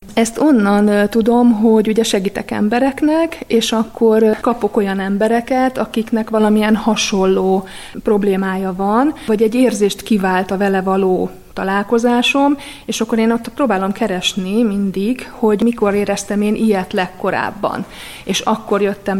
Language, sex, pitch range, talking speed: Hungarian, female, 195-225 Hz, 130 wpm